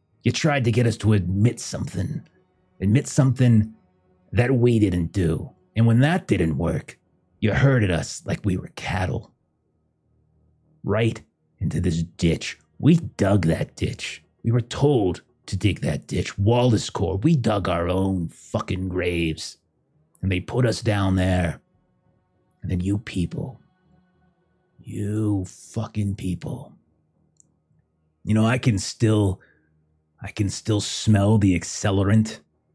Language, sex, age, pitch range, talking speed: English, male, 30-49, 90-115 Hz, 135 wpm